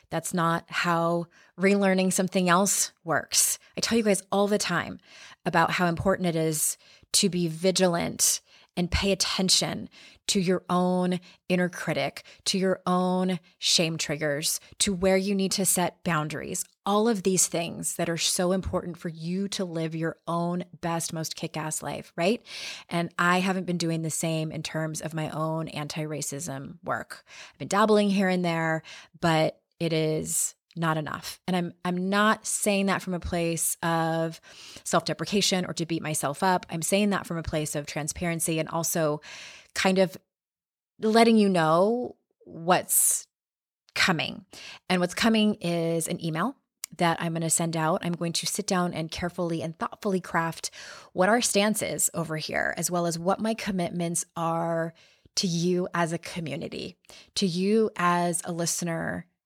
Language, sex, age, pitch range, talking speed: English, female, 20-39, 165-190 Hz, 165 wpm